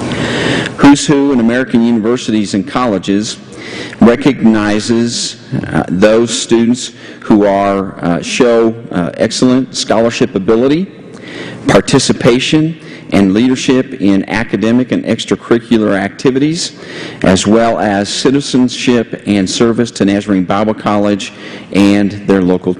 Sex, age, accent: male, 40-59, American